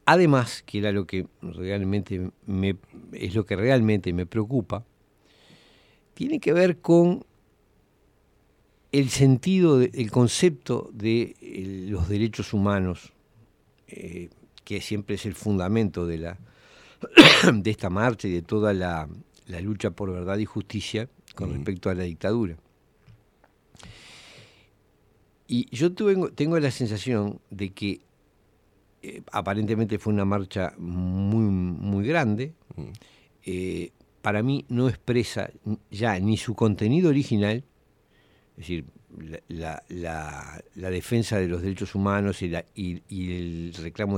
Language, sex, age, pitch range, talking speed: Spanish, male, 60-79, 95-120 Hz, 125 wpm